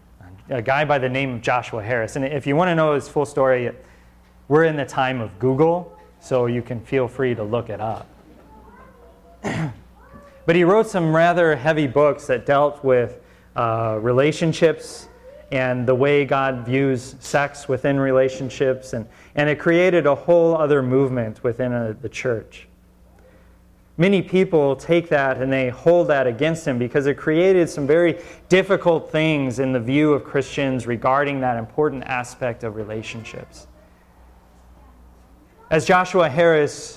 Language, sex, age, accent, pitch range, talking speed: English, male, 30-49, American, 125-165 Hz, 155 wpm